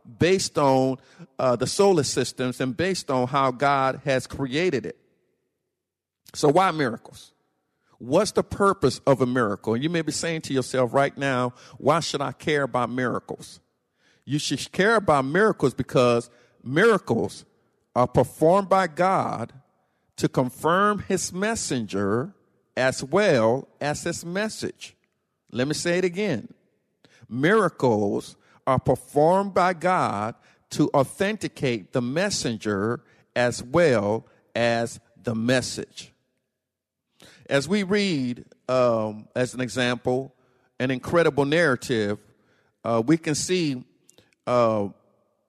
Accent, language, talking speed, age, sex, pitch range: American, English, 120 wpm, 50-69, male, 125-165 Hz